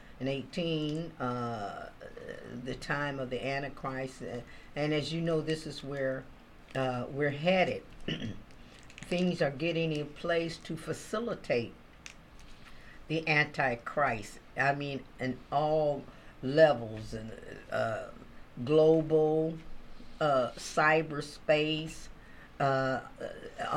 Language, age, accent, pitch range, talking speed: English, 50-69, American, 135-165 Hz, 95 wpm